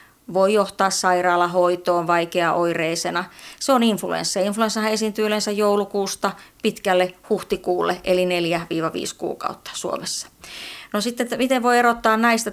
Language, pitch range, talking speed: Finnish, 180-215 Hz, 110 wpm